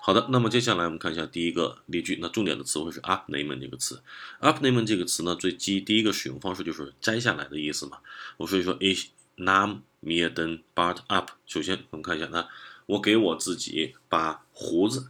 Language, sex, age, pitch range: Chinese, male, 20-39, 85-110 Hz